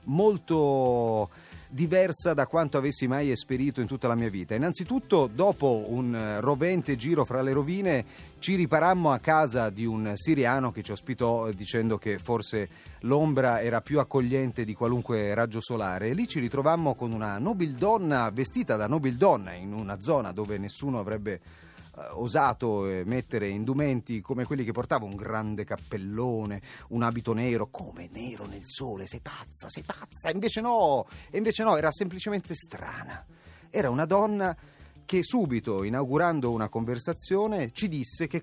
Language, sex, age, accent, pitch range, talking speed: Italian, male, 30-49, native, 110-155 Hz, 150 wpm